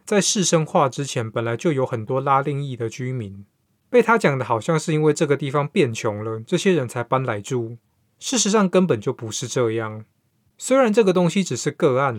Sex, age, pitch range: male, 20-39, 115-165 Hz